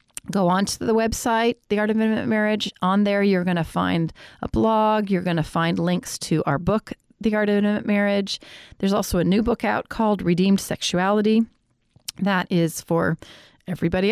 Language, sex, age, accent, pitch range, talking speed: English, female, 40-59, American, 180-225 Hz, 180 wpm